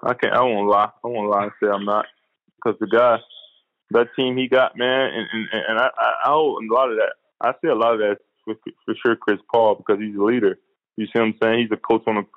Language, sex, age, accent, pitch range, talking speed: English, male, 20-39, American, 110-145 Hz, 270 wpm